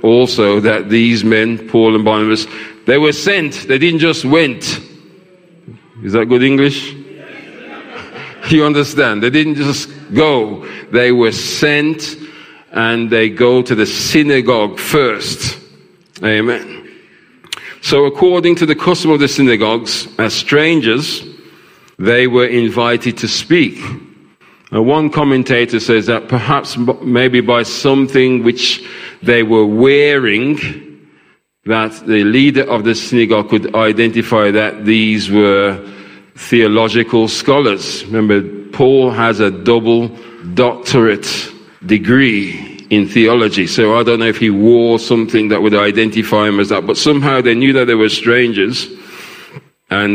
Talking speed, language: 130 wpm, English